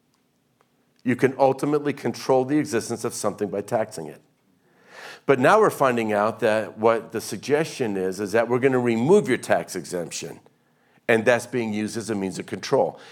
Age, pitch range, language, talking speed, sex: 50-69, 115-155 Hz, English, 180 wpm, male